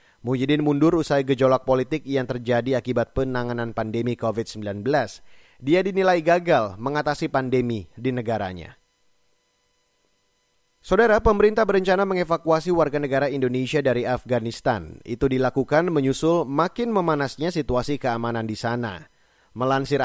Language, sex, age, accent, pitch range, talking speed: Indonesian, male, 30-49, native, 125-150 Hz, 110 wpm